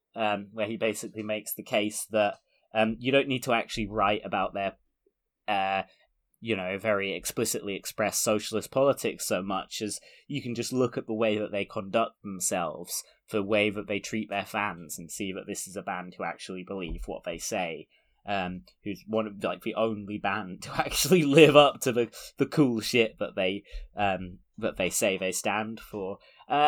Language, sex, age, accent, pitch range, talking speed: English, male, 20-39, British, 95-120 Hz, 195 wpm